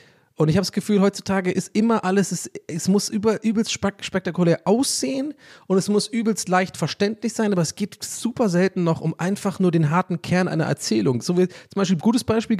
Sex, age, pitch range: male, 30-49, 145-190 Hz